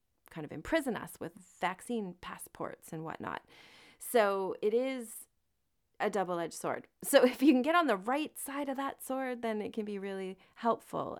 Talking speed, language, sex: 175 wpm, English, female